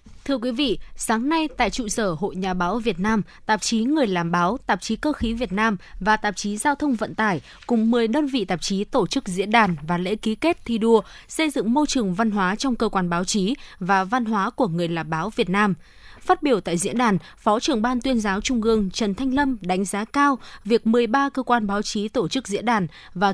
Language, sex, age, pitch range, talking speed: Vietnamese, female, 20-39, 195-245 Hz, 245 wpm